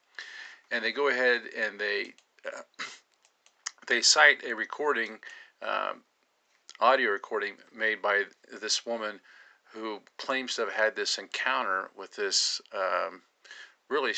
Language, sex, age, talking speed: English, male, 50-69, 125 wpm